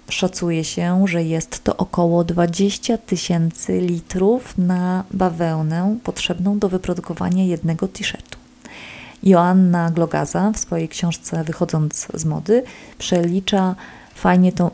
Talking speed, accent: 110 wpm, native